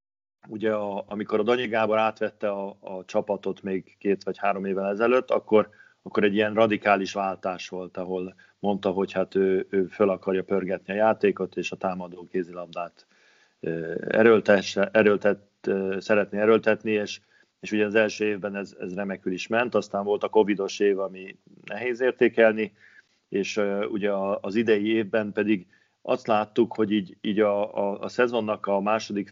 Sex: male